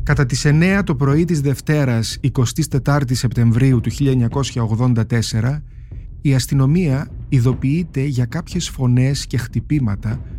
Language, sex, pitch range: English, male, 115-140 Hz